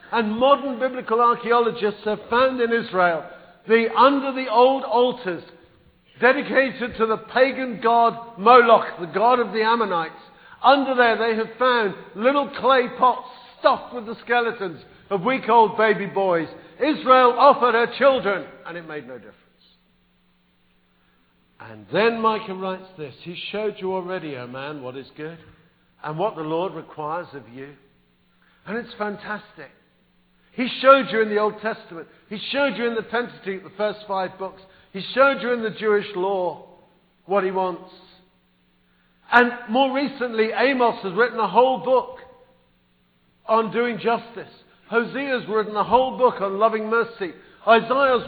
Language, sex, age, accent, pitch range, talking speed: English, male, 50-69, British, 180-245 Hz, 155 wpm